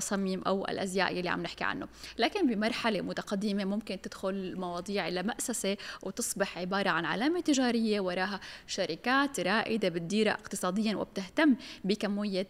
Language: English